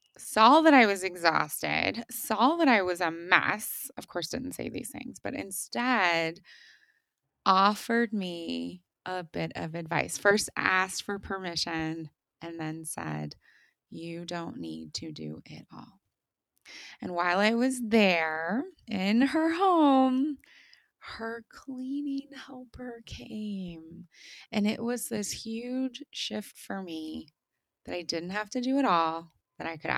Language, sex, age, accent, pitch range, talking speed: English, female, 20-39, American, 165-245 Hz, 140 wpm